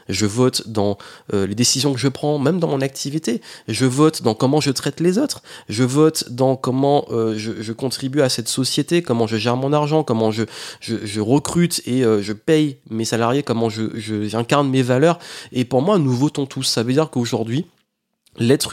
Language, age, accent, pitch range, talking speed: French, 30-49, French, 110-140 Hz, 210 wpm